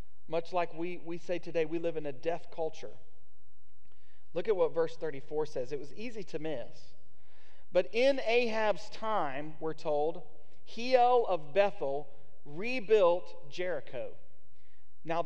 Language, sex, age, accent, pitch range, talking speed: English, male, 40-59, American, 160-215 Hz, 140 wpm